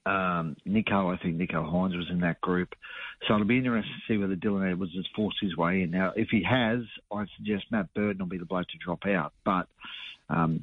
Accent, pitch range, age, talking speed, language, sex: Australian, 90-115 Hz, 50-69, 230 wpm, English, male